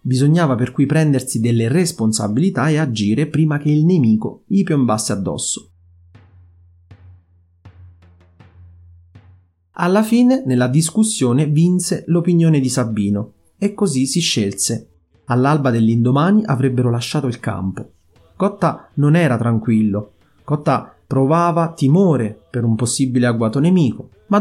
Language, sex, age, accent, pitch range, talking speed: Italian, male, 30-49, native, 105-150 Hz, 115 wpm